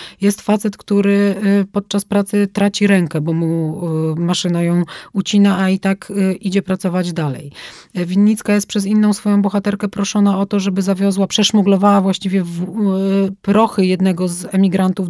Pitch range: 180-200 Hz